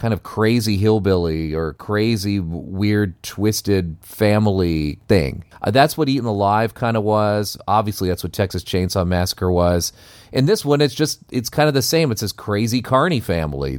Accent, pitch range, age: American, 95-120 Hz, 40-59